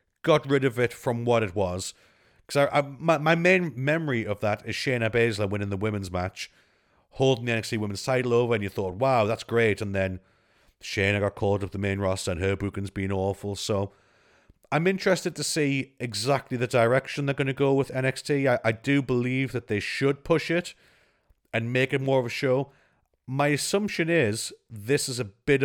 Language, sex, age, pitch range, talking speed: English, male, 40-59, 100-135 Hz, 205 wpm